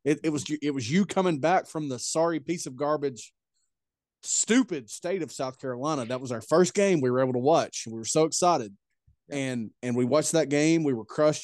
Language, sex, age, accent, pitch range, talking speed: English, male, 30-49, American, 125-160 Hz, 220 wpm